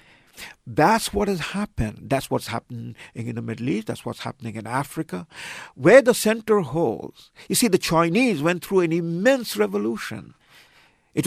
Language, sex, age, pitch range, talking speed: English, male, 50-69, 120-155 Hz, 160 wpm